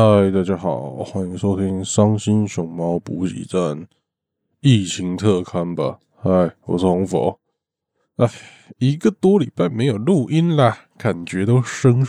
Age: 20-39